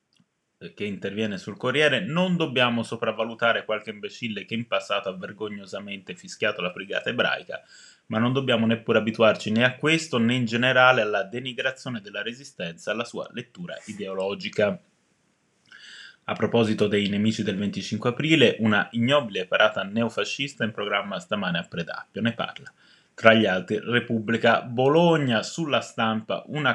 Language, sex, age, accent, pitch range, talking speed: Italian, male, 20-39, native, 105-130 Hz, 140 wpm